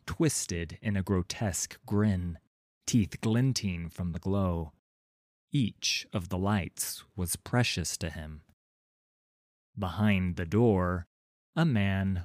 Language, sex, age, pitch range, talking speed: English, male, 30-49, 90-110 Hz, 115 wpm